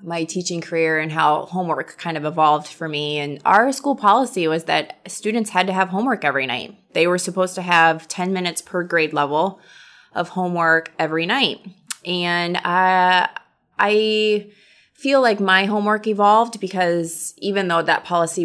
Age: 20-39